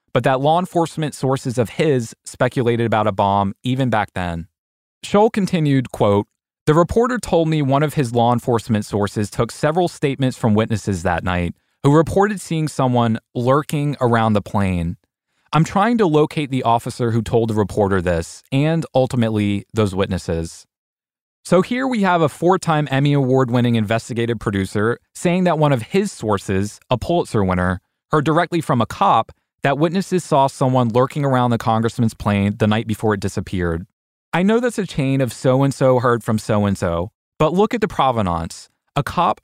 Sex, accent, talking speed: male, American, 170 wpm